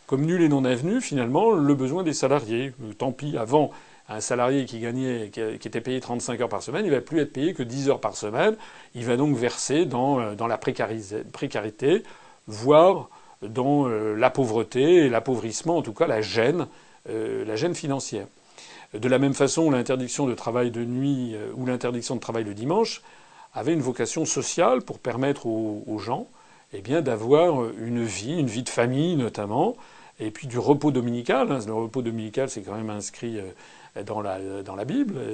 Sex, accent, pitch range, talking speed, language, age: male, French, 115-145 Hz, 180 wpm, French, 40-59